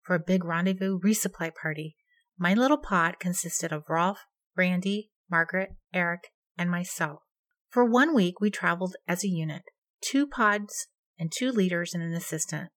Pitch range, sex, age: 170-235 Hz, female, 40-59